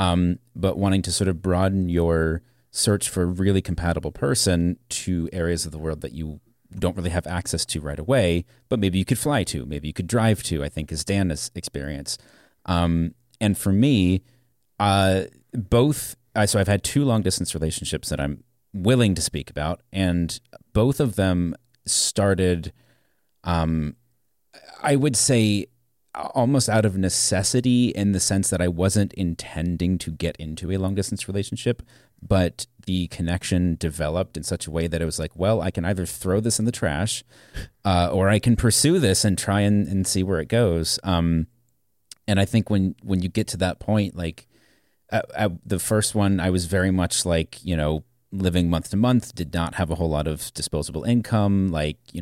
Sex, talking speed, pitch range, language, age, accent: male, 185 wpm, 85-105 Hz, English, 30-49, American